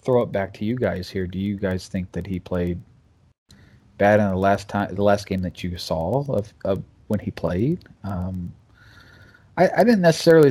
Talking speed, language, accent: 200 wpm, English, American